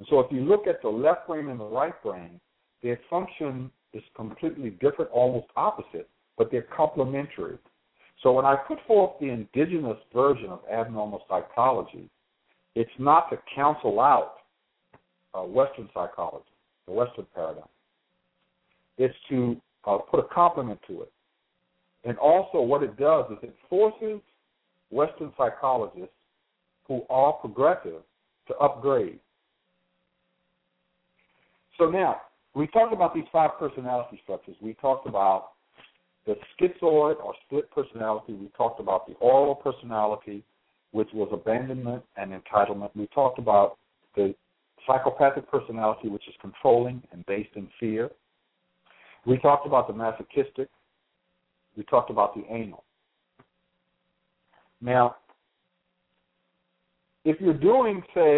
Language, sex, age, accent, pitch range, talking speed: English, male, 60-79, American, 105-150 Hz, 125 wpm